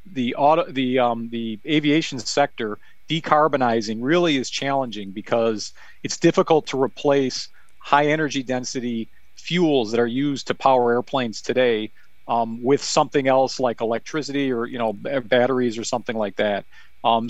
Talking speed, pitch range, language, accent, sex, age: 145 wpm, 120-150 Hz, English, American, male, 40-59